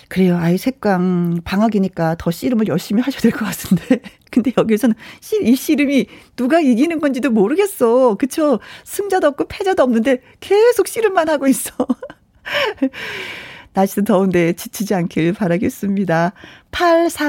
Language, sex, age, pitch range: Korean, female, 40-59, 175-260 Hz